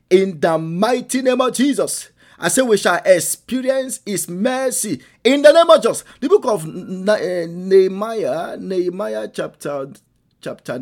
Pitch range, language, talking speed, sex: 140-200 Hz, English, 140 wpm, male